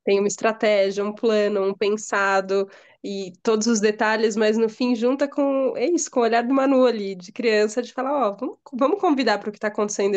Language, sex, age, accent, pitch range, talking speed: Portuguese, female, 20-39, Brazilian, 195-245 Hz, 210 wpm